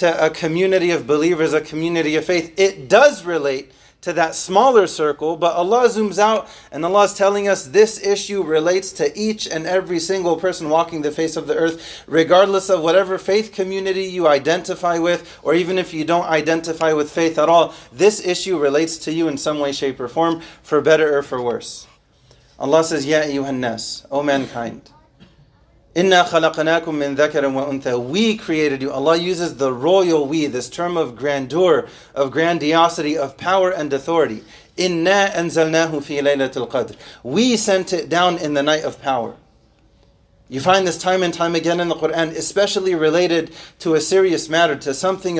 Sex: male